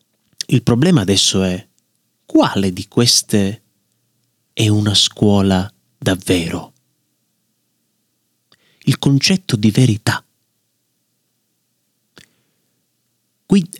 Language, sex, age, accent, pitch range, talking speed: Italian, male, 30-49, native, 100-125 Hz, 70 wpm